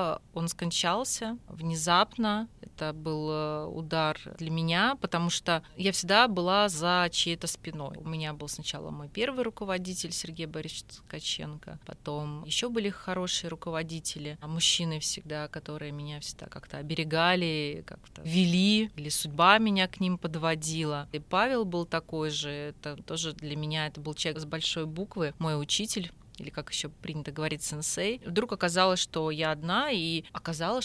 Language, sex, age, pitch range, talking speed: Russian, female, 30-49, 155-200 Hz, 150 wpm